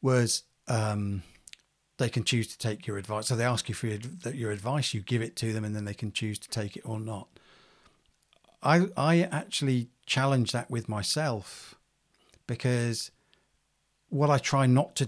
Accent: British